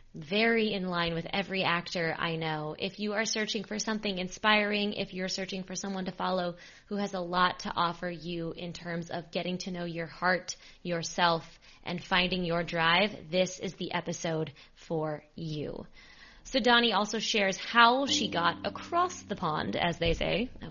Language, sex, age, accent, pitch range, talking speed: English, female, 20-39, American, 170-205 Hz, 180 wpm